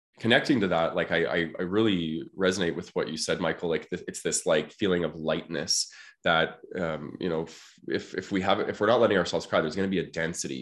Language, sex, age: English, male, 20-39